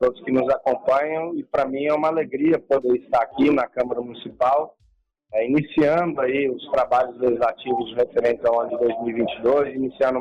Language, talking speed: Portuguese, 170 wpm